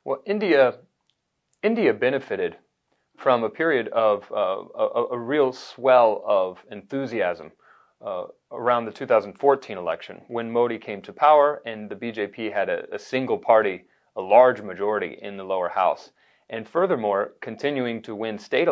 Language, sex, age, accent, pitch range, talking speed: English, male, 30-49, American, 105-125 Hz, 145 wpm